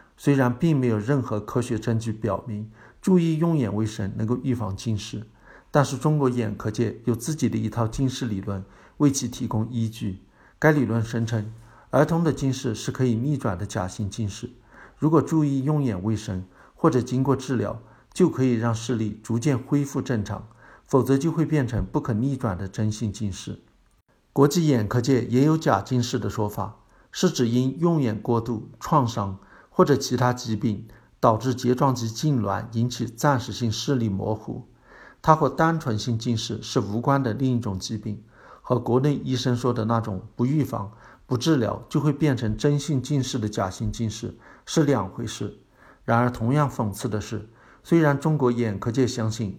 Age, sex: 50-69, male